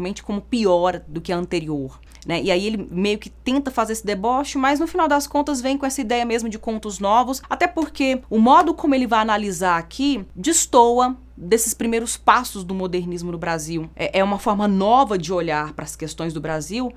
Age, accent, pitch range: 20-39, Brazilian, 175-250 Hz